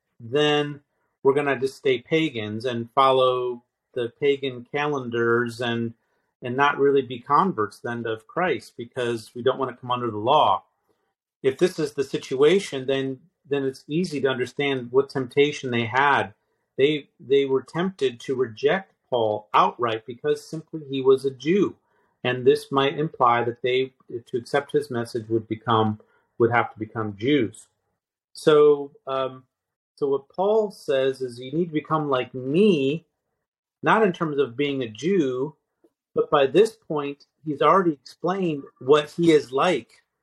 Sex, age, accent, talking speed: male, 40-59, American, 160 wpm